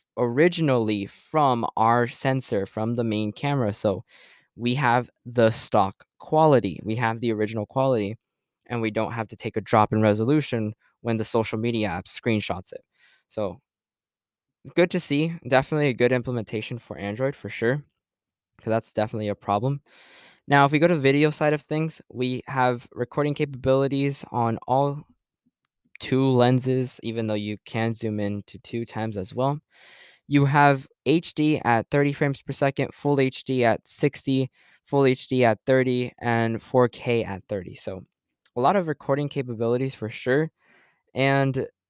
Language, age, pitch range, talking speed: English, 10-29, 110-140 Hz, 160 wpm